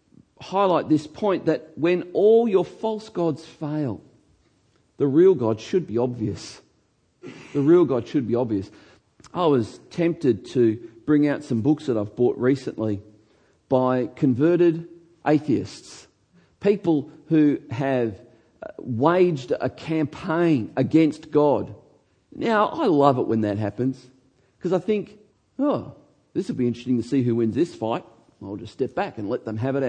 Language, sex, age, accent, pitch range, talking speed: English, male, 50-69, Australian, 115-160 Hz, 150 wpm